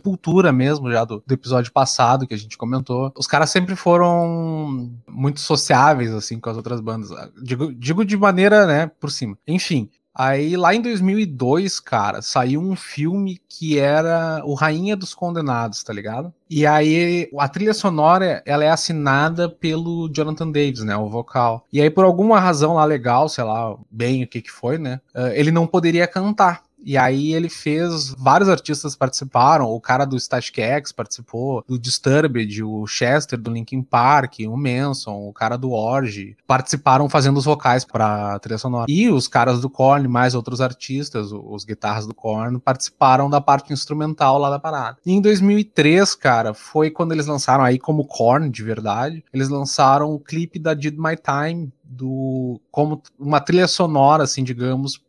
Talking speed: 175 wpm